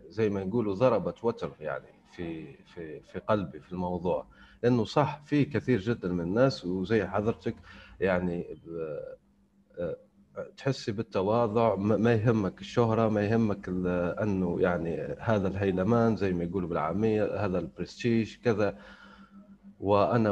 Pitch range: 100-130 Hz